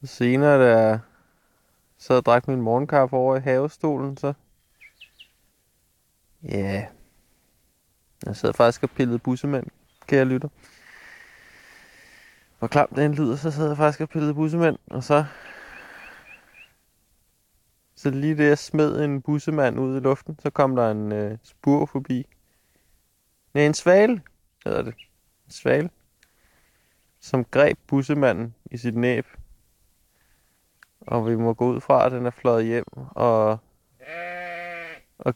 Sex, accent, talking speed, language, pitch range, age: male, native, 135 wpm, Danish, 115-150 Hz, 20-39